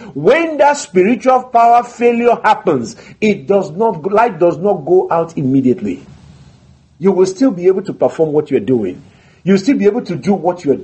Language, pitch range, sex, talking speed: English, 165-240 Hz, male, 185 wpm